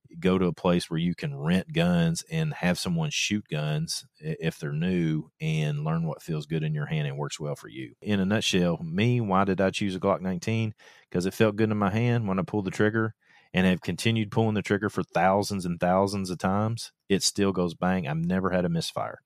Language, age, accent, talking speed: English, 30-49, American, 230 wpm